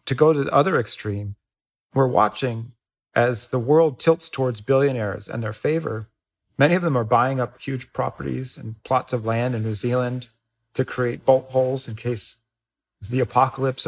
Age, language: 40-59, English